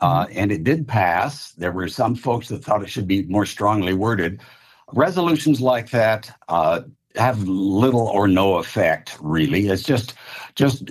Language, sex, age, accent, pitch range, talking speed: English, male, 60-79, American, 95-130 Hz, 165 wpm